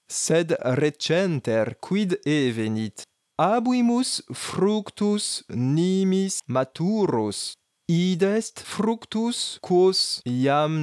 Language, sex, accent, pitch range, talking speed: Greek, male, French, 140-200 Hz, 70 wpm